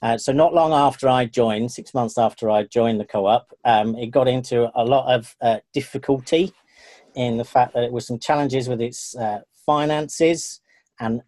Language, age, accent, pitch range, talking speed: English, 40-59, British, 115-140 Hz, 190 wpm